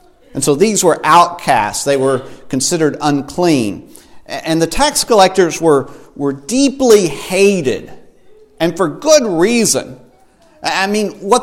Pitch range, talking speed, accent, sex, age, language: 160-235 Hz, 125 wpm, American, male, 50-69, English